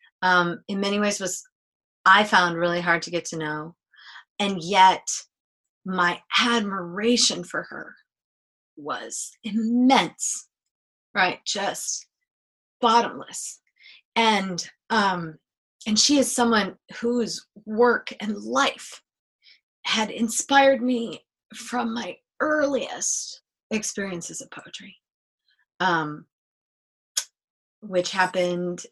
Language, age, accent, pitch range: English, 30-49, American, 175-220 Hz